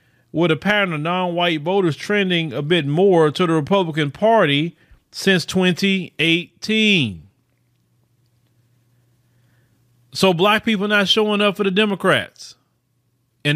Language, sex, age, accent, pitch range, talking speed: English, male, 40-59, American, 140-210 Hz, 120 wpm